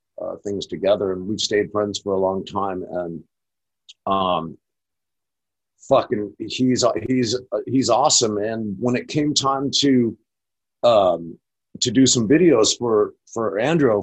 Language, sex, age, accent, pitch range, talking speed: English, male, 50-69, American, 105-145 Hz, 140 wpm